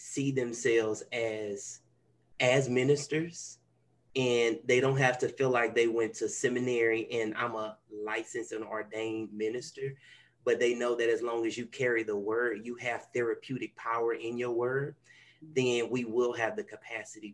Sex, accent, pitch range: male, American, 110-125 Hz